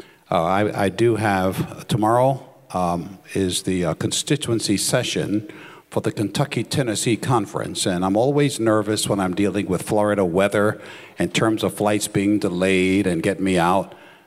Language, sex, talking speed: English, male, 155 wpm